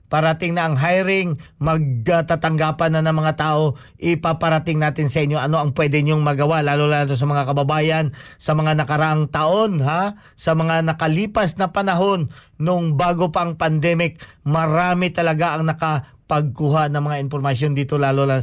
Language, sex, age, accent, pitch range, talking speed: Filipino, male, 40-59, native, 130-155 Hz, 160 wpm